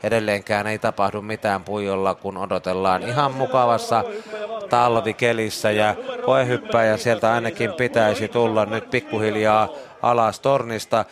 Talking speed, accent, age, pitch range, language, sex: 110 wpm, native, 30-49, 105-125 Hz, Finnish, male